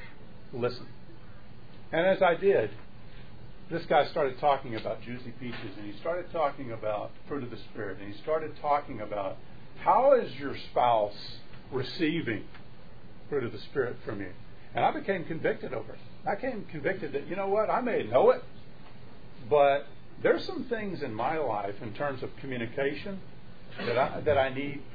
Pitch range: 125-180 Hz